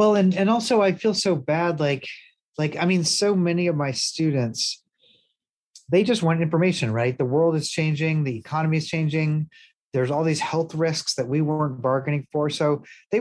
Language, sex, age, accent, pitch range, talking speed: English, male, 30-49, American, 140-170 Hz, 190 wpm